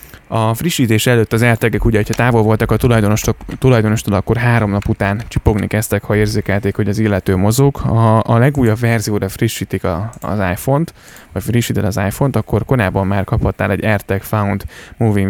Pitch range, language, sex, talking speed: 100-115 Hz, Hungarian, male, 170 wpm